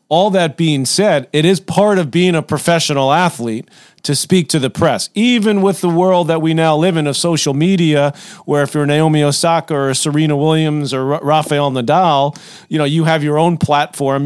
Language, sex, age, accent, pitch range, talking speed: English, male, 40-59, American, 140-165 Hz, 200 wpm